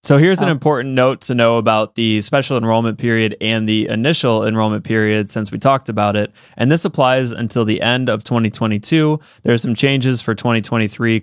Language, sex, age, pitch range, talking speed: English, male, 20-39, 110-130 Hz, 190 wpm